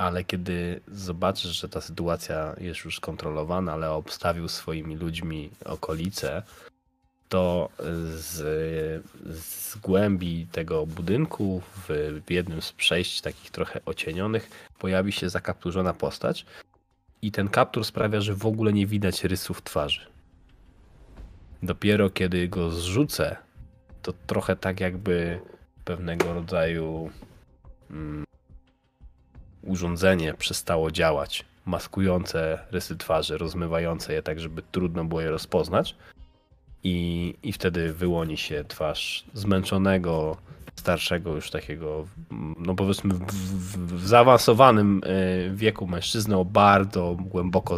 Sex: male